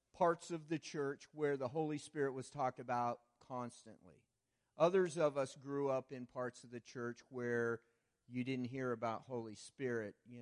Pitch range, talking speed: 120-145 Hz, 175 wpm